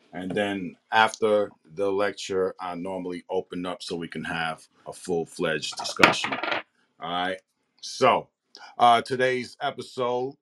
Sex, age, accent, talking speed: male, 40-59, American, 130 wpm